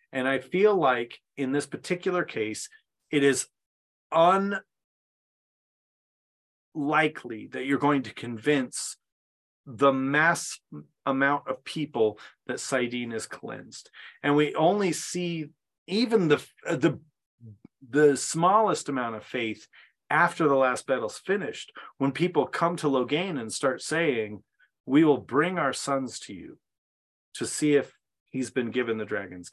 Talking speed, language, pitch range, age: 135 wpm, English, 115-160 Hz, 30-49